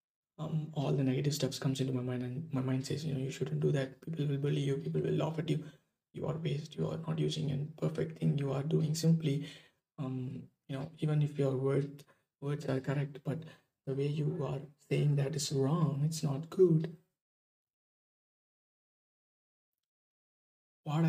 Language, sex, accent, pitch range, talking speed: English, male, Indian, 130-160 Hz, 185 wpm